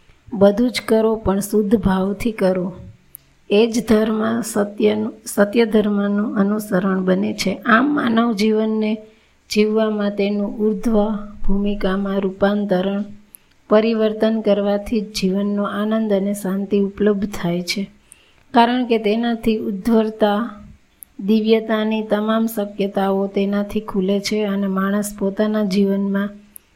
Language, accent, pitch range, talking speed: Gujarati, native, 200-220 Hz, 90 wpm